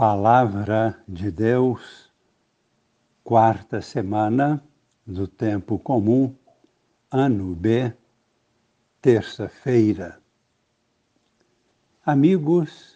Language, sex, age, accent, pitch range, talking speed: Portuguese, male, 60-79, Brazilian, 105-135 Hz, 55 wpm